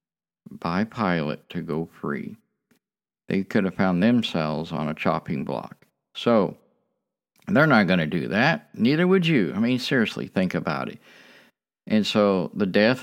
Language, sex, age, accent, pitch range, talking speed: English, male, 50-69, American, 95-140 Hz, 155 wpm